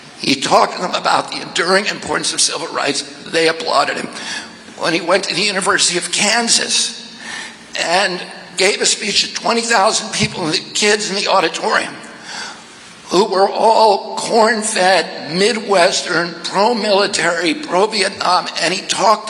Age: 60-79